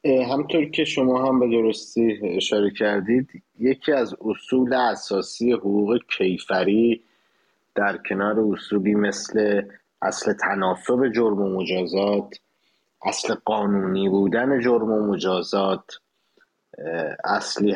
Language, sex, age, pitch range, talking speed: English, male, 30-49, 100-125 Hz, 100 wpm